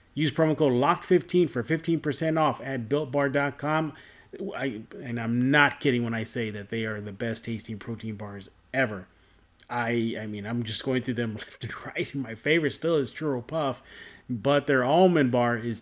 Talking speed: 180 wpm